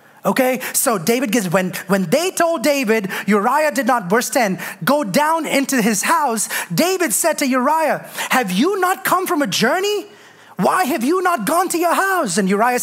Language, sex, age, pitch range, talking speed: English, male, 30-49, 220-330 Hz, 185 wpm